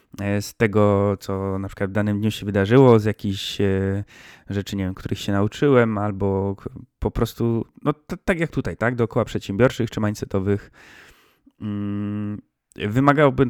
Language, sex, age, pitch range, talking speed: Polish, male, 20-39, 100-120 Hz, 140 wpm